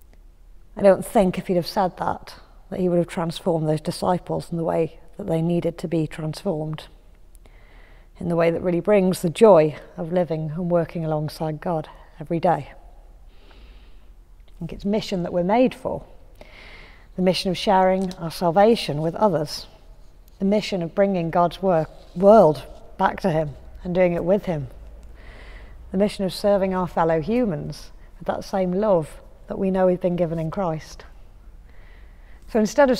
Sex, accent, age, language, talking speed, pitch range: female, British, 40-59, English, 170 wpm, 155-205 Hz